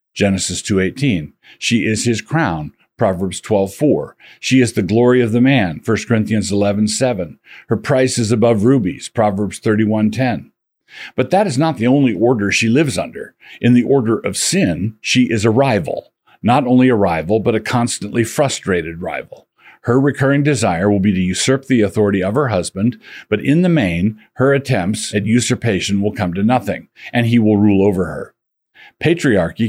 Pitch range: 100-125 Hz